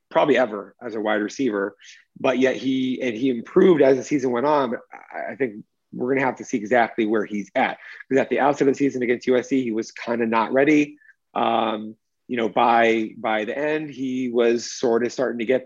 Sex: male